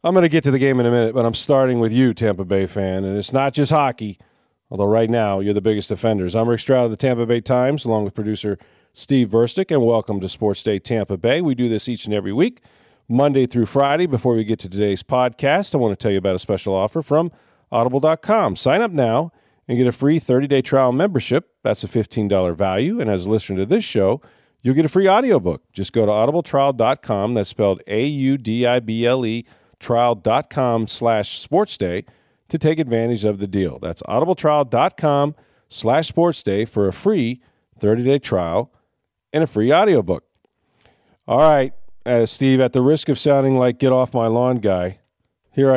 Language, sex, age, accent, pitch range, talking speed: English, male, 40-59, American, 105-135 Hz, 200 wpm